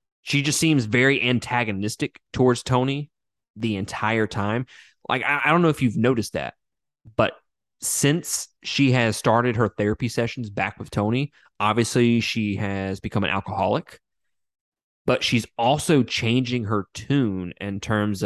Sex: male